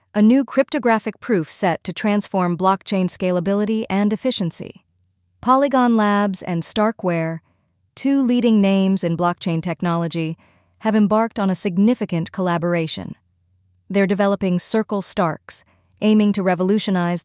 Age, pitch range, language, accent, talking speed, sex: 30-49, 180-220 Hz, English, American, 120 wpm, female